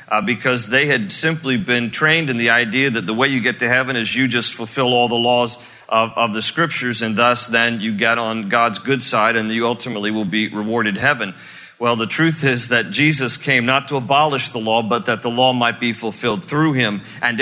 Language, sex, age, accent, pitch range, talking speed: English, male, 40-59, American, 120-150 Hz, 225 wpm